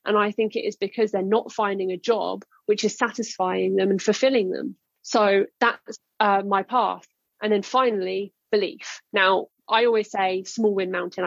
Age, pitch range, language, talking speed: 30-49, 200-240 Hz, English, 180 wpm